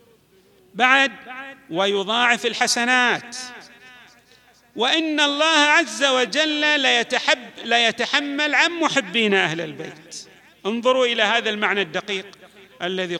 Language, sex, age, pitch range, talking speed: Arabic, male, 40-59, 195-275 Hz, 85 wpm